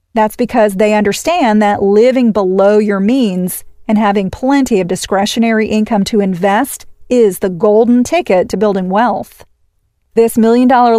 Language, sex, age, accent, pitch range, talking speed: English, female, 40-59, American, 205-250 Hz, 140 wpm